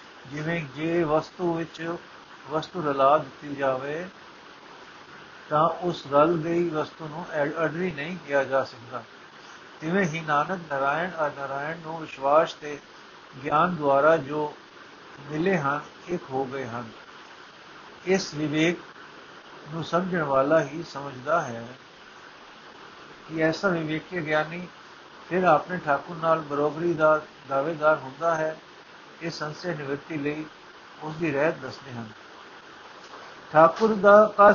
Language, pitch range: Punjabi, 150-175 Hz